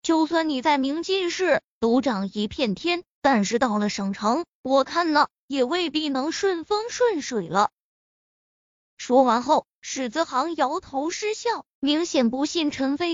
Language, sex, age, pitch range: Chinese, female, 20-39, 250-345 Hz